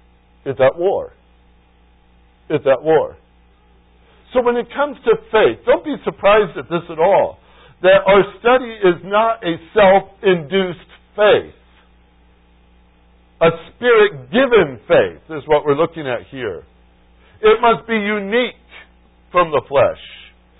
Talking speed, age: 125 wpm, 60-79